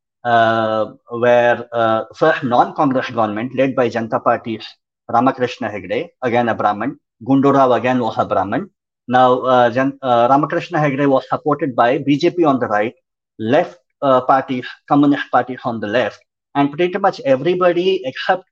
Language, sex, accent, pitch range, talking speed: English, male, Indian, 120-145 Hz, 150 wpm